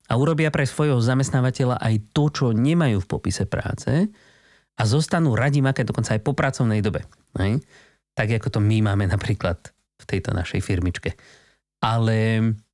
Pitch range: 105-130 Hz